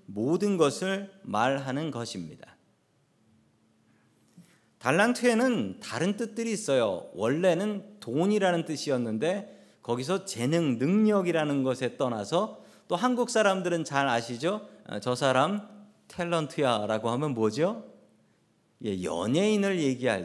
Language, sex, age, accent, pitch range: Korean, male, 40-59, native, 125-195 Hz